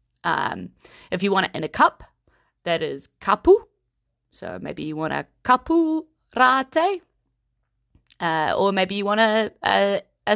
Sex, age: female, 20-39